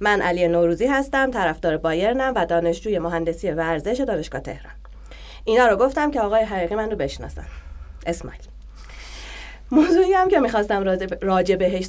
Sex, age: female, 30-49